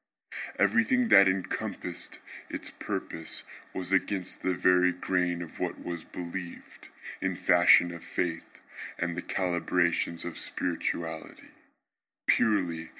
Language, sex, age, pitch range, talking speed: English, female, 20-39, 85-100 Hz, 110 wpm